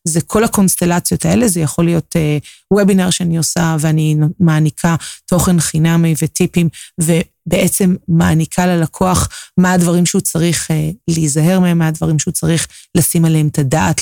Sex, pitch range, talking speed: female, 160-185 Hz, 150 wpm